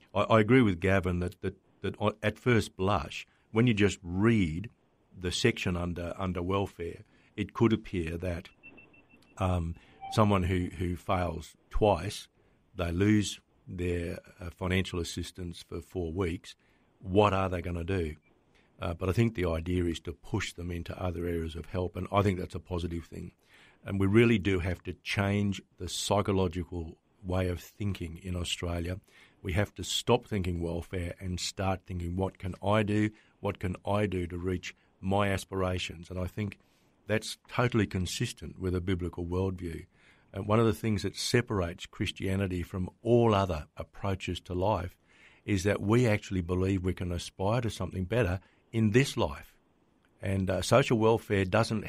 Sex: male